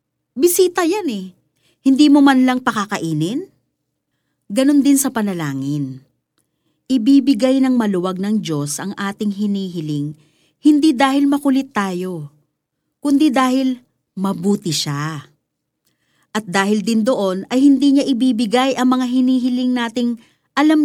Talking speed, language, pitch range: 120 wpm, Filipino, 170-255 Hz